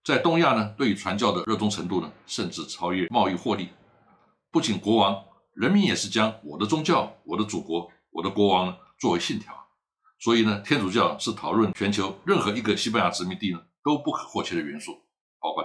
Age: 60-79